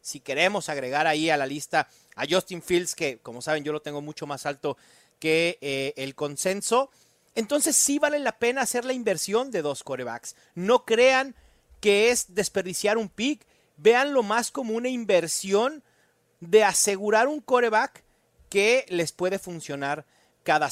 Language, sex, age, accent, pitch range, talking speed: Spanish, male, 40-59, Mexican, 150-220 Hz, 160 wpm